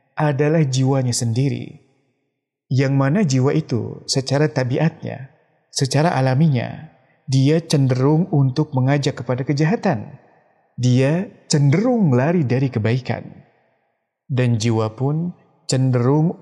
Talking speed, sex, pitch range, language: 95 wpm, male, 125-155 Hz, Indonesian